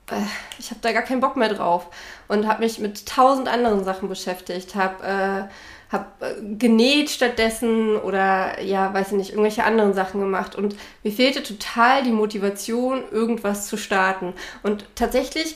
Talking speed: 155 wpm